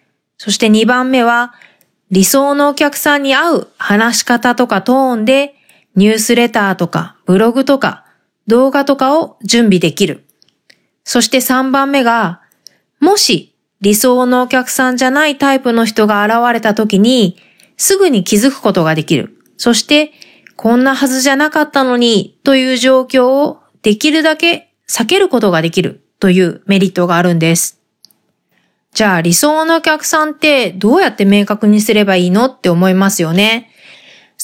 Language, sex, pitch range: Japanese, female, 205-275 Hz